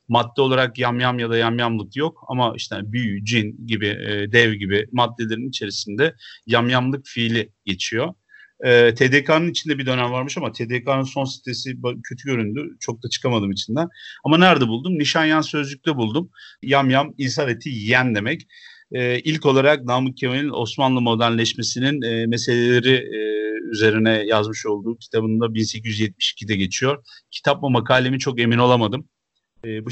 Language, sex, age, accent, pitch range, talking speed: Turkish, male, 40-59, native, 110-140 Hz, 130 wpm